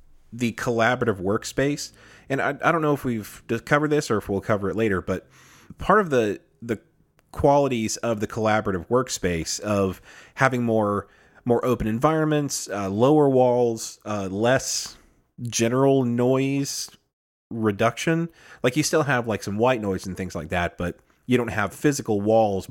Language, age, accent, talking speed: English, 30-49, American, 160 wpm